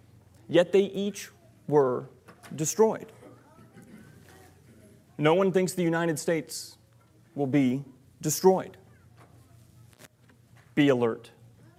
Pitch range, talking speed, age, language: 120-175 Hz, 80 wpm, 30-49, English